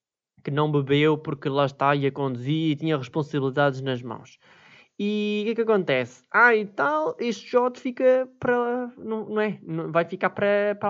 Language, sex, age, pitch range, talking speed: Portuguese, male, 20-39, 145-195 Hz, 185 wpm